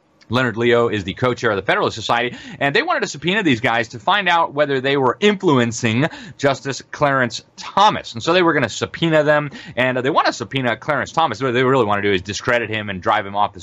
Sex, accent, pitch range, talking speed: male, American, 120-155 Hz, 240 wpm